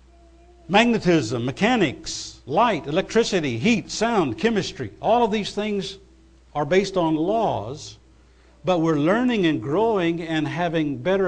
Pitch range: 105-165 Hz